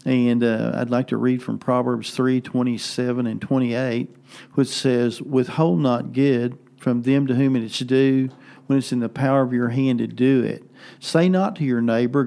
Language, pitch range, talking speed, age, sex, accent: English, 125-140 Hz, 205 wpm, 50-69, male, American